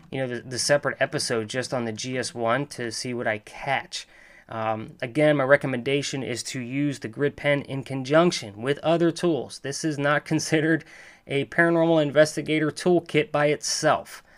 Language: English